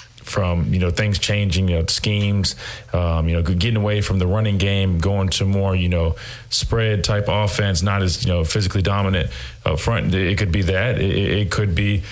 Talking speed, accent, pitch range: 200 wpm, American, 95-115 Hz